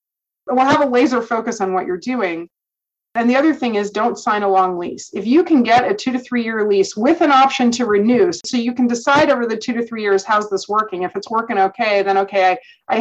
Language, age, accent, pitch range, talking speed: English, 30-49, American, 195-245 Hz, 255 wpm